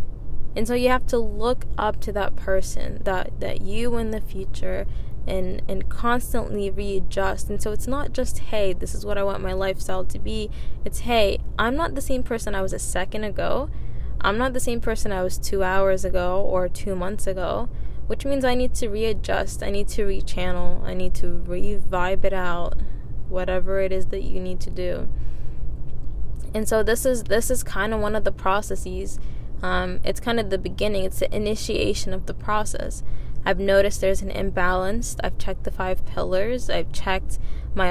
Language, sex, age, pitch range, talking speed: English, female, 10-29, 180-215 Hz, 195 wpm